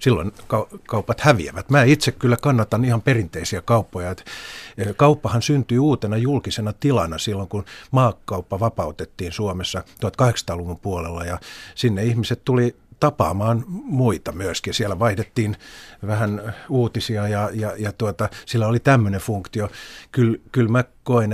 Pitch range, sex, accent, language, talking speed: 100-120 Hz, male, native, Finnish, 125 wpm